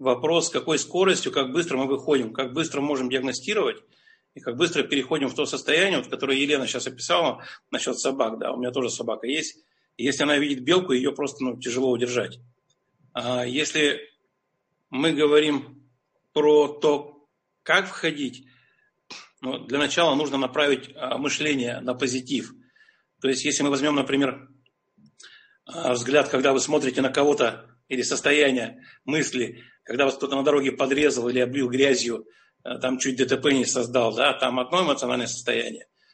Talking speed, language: 145 wpm, Russian